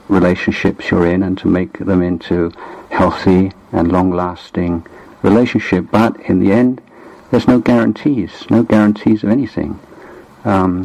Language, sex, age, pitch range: Thai, male, 50-69, 95-105 Hz